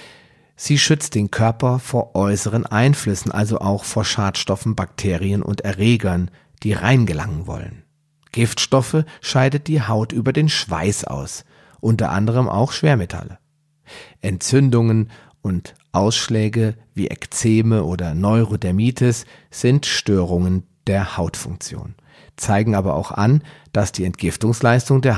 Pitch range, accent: 100-135 Hz, German